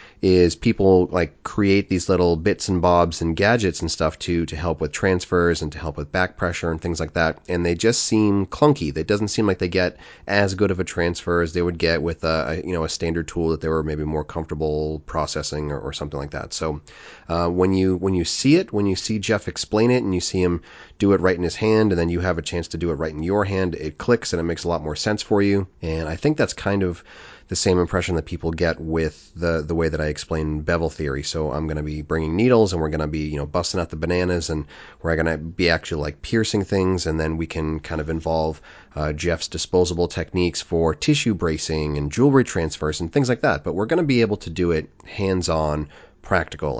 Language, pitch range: English, 80-95 Hz